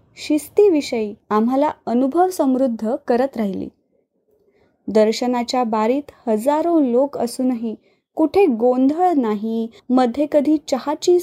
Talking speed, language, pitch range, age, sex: 95 wpm, Marathi, 225-295 Hz, 20-39, female